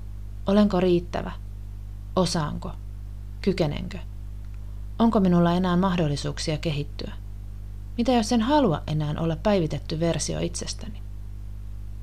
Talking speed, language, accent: 90 wpm, Finnish, native